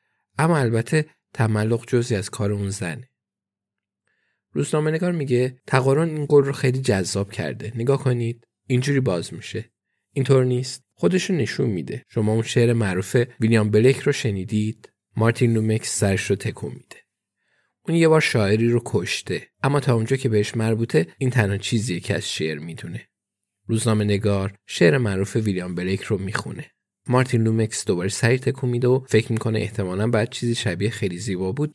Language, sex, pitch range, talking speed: Persian, male, 100-130 Hz, 155 wpm